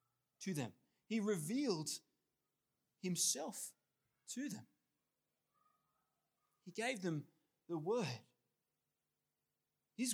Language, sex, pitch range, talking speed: English, male, 145-225 Hz, 75 wpm